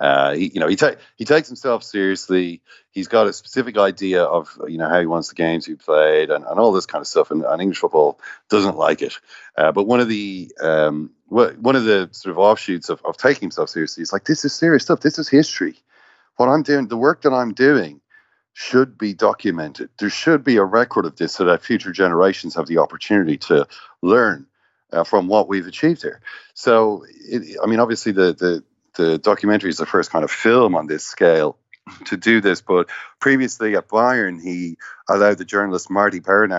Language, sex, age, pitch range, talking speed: English, male, 40-59, 85-130 Hz, 215 wpm